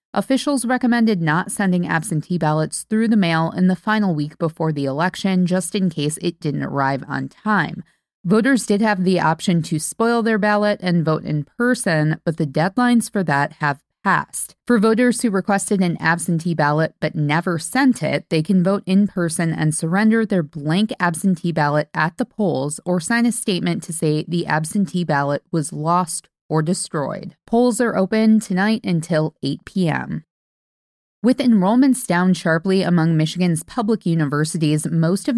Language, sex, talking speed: English, female, 170 wpm